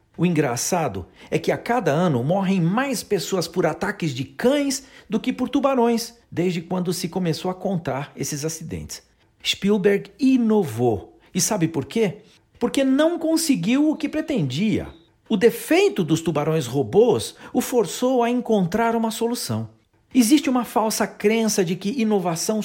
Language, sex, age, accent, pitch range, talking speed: Portuguese, male, 50-69, Brazilian, 150-230 Hz, 150 wpm